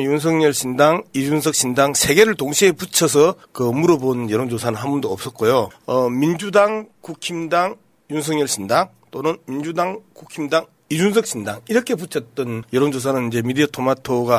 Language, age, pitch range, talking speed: English, 40-59, 145-215 Hz, 125 wpm